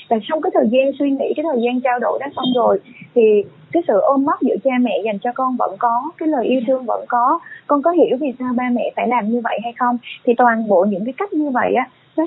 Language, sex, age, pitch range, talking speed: Vietnamese, female, 20-39, 210-265 Hz, 275 wpm